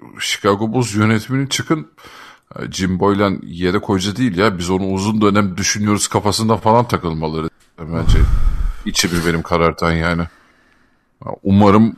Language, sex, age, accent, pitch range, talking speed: Turkish, male, 50-69, native, 95-125 Hz, 125 wpm